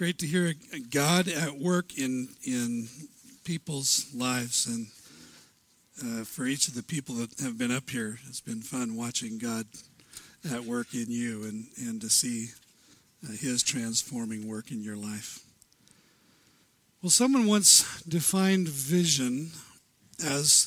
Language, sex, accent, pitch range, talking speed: English, male, American, 130-190 Hz, 140 wpm